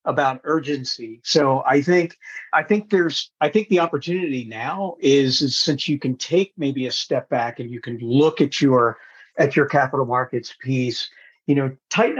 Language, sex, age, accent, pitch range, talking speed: English, male, 50-69, American, 130-160 Hz, 180 wpm